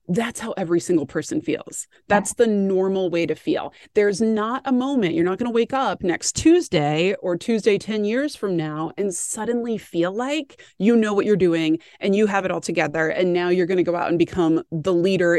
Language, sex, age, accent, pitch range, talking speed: English, female, 30-49, American, 195-270 Hz, 220 wpm